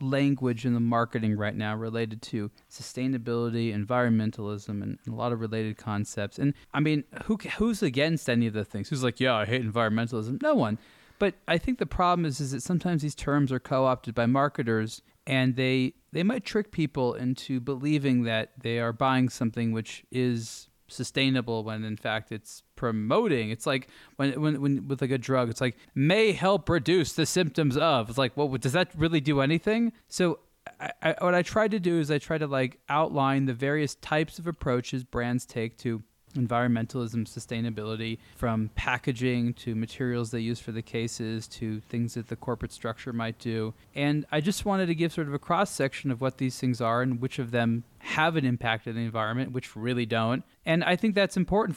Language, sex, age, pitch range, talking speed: English, male, 20-39, 115-145 Hz, 200 wpm